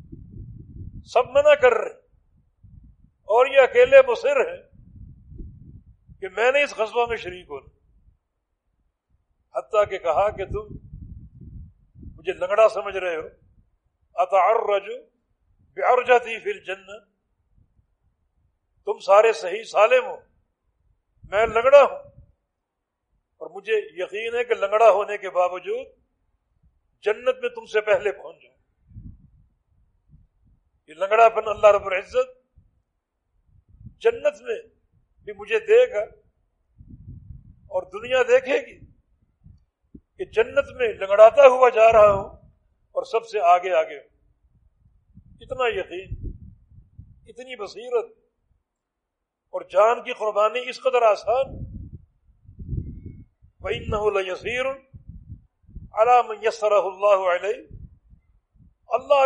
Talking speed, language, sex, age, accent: 90 wpm, English, male, 50-69, Indian